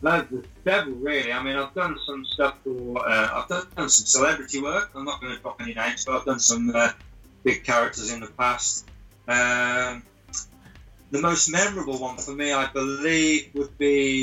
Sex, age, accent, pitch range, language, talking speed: male, 30-49, British, 115-145 Hz, English, 195 wpm